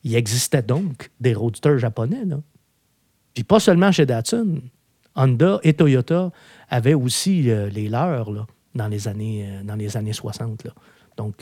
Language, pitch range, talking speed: French, 115-150 Hz, 165 wpm